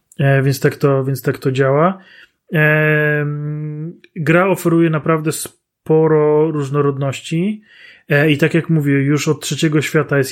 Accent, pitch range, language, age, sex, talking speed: native, 145-160 Hz, Polish, 30-49, male, 110 wpm